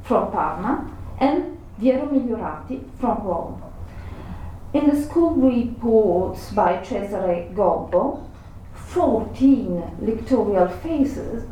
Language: English